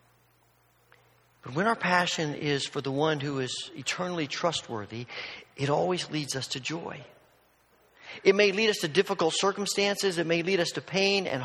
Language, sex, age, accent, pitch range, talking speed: English, male, 40-59, American, 125-180 Hz, 170 wpm